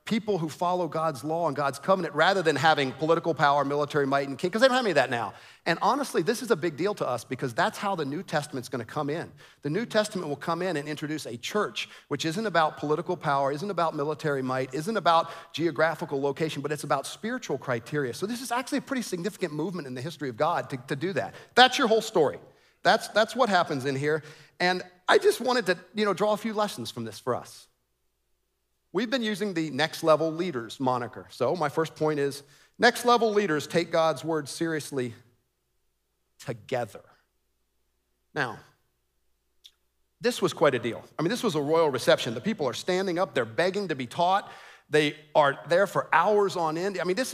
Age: 40-59